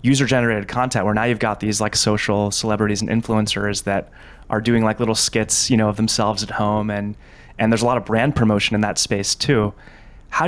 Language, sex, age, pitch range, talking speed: English, male, 30-49, 105-125 Hz, 210 wpm